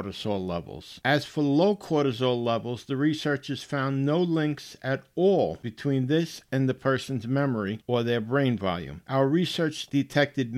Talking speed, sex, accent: 155 wpm, male, American